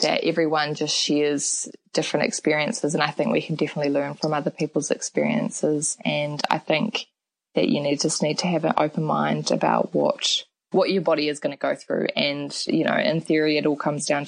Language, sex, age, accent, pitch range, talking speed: English, female, 20-39, Australian, 150-180 Hz, 210 wpm